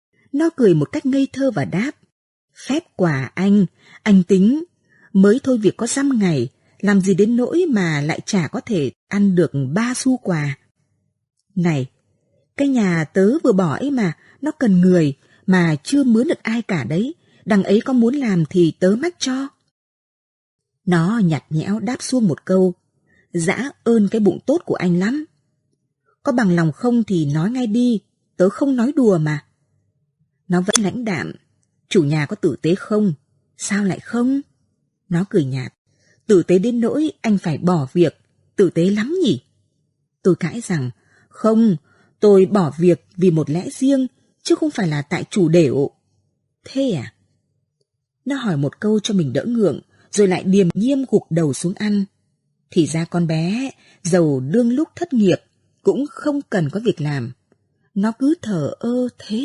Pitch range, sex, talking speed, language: 155-235 Hz, female, 175 wpm, Vietnamese